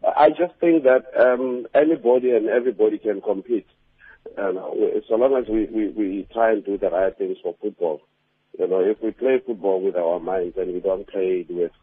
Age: 50-69